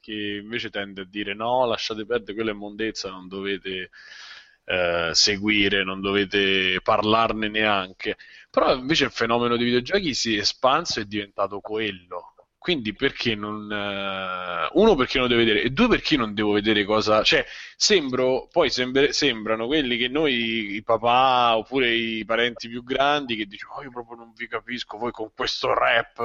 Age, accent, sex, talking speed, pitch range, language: 20-39, native, male, 165 wpm, 105-125 Hz, Italian